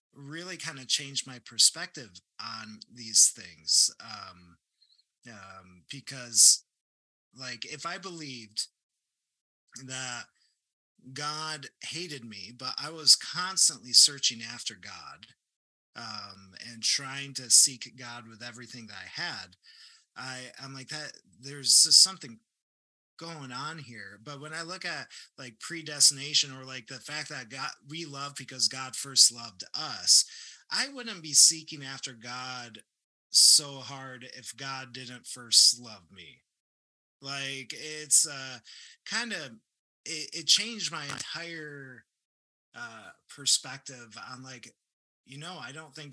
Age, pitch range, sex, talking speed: 30-49, 120-150 Hz, male, 130 wpm